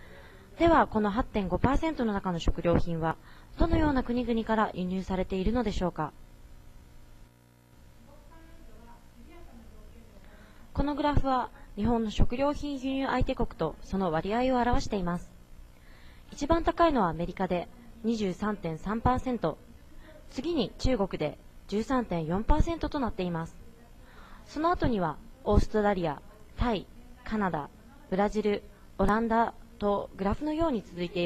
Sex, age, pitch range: female, 20-39, 165-240 Hz